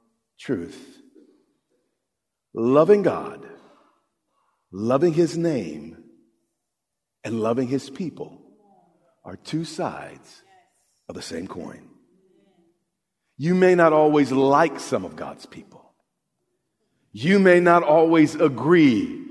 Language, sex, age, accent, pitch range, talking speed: English, male, 50-69, American, 135-190 Hz, 95 wpm